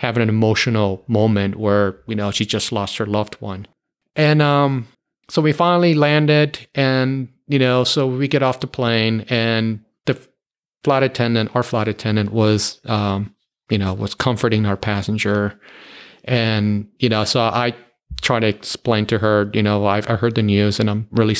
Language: English